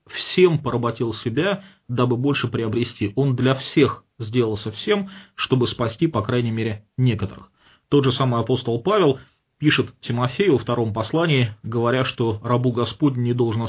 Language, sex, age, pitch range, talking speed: English, male, 30-49, 110-140 Hz, 145 wpm